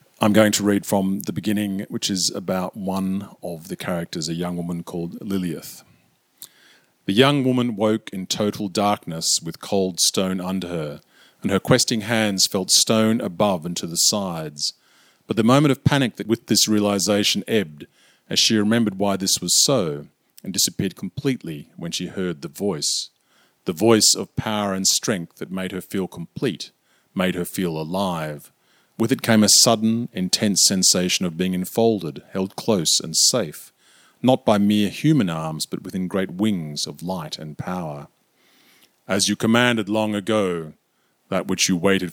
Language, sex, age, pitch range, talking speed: English, male, 40-59, 90-110 Hz, 170 wpm